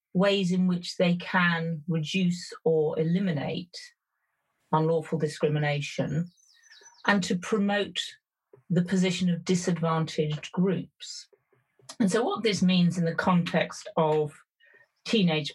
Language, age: English, 40-59